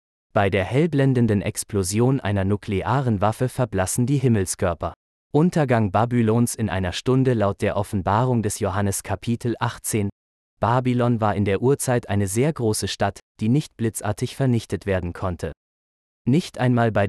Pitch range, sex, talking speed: 100-125 Hz, male, 140 wpm